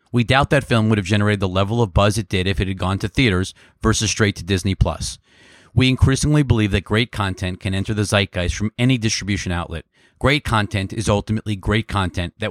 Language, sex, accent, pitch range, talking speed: English, male, American, 100-125 Hz, 215 wpm